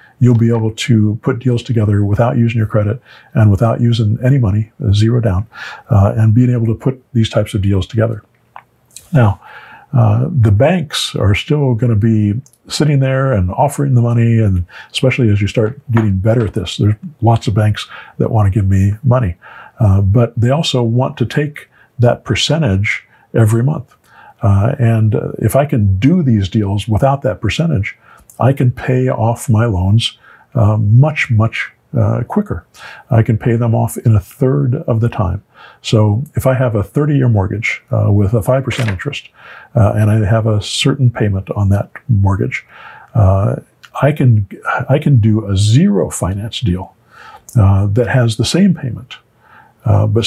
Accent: American